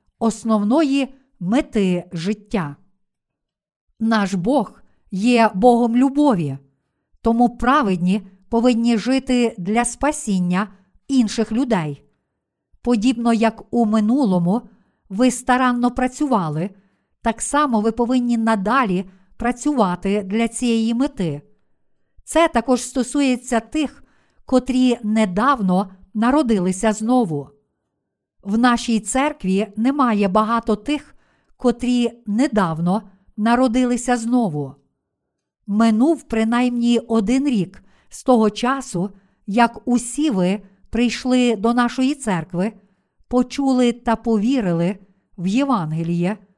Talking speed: 90 wpm